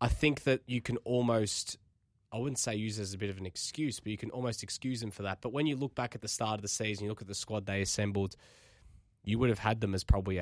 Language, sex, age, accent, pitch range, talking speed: English, male, 20-39, Australian, 100-125 Hz, 290 wpm